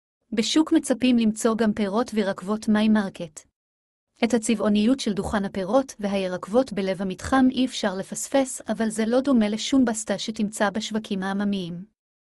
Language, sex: Hebrew, female